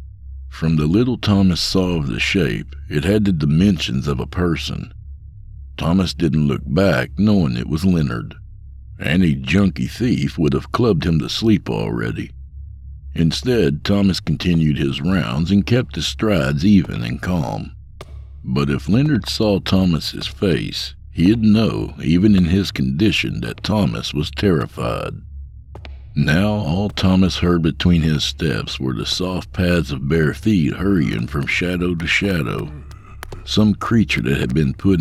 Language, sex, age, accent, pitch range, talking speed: English, male, 60-79, American, 70-95 Hz, 145 wpm